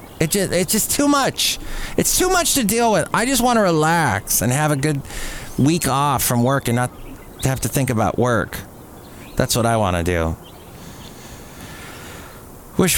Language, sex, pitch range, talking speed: English, male, 120-160 Hz, 180 wpm